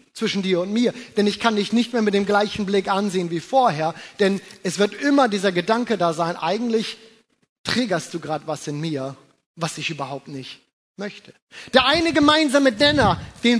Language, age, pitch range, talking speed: German, 30-49, 185-260 Hz, 185 wpm